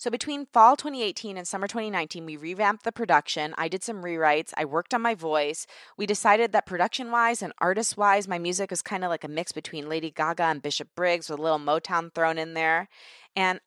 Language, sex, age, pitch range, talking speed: English, female, 20-39, 165-205 Hz, 210 wpm